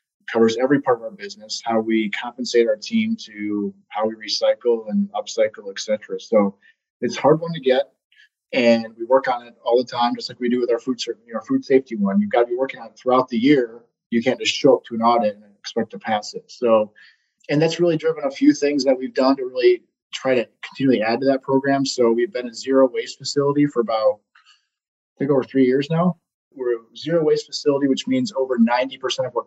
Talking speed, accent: 225 wpm, American